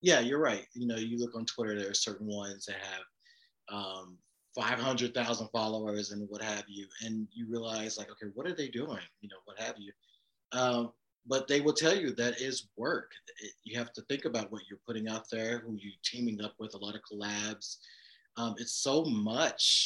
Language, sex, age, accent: English, male, 30-49, American